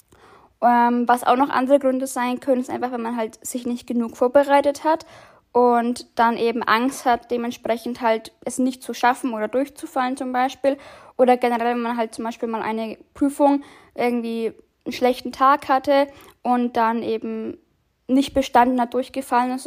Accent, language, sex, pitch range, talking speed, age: German, German, female, 235-270 Hz, 170 wpm, 10-29